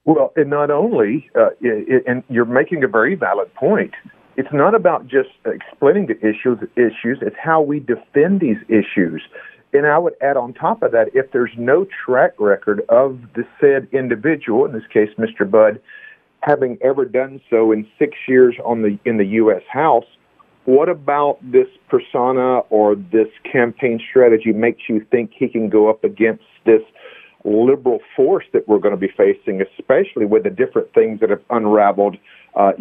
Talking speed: 175 wpm